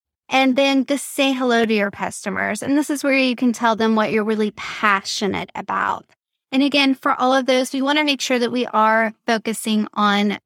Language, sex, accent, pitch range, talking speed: English, female, American, 215-265 Hz, 210 wpm